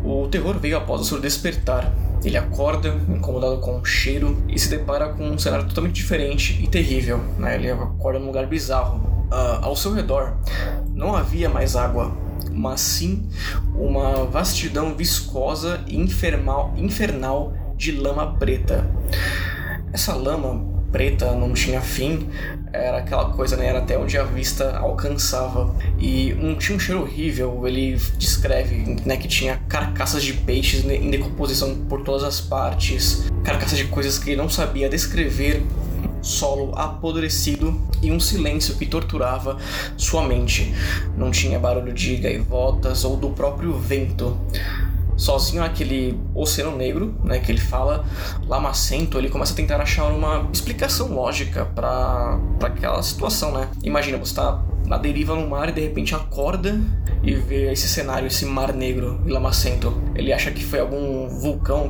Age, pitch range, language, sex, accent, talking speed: 20-39, 85-95 Hz, Portuguese, male, Brazilian, 150 wpm